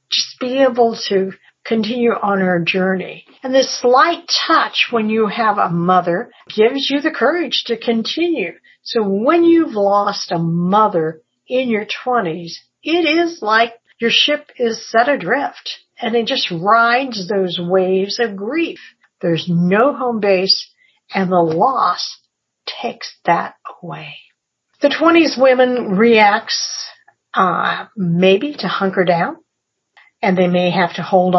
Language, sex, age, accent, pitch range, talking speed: English, female, 50-69, American, 195-270 Hz, 140 wpm